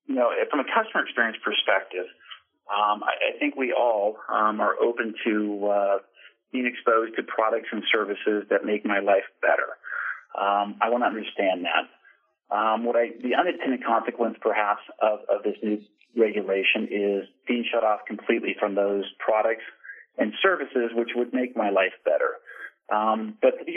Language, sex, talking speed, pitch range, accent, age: English, male, 165 wpm, 105-125 Hz, American, 40-59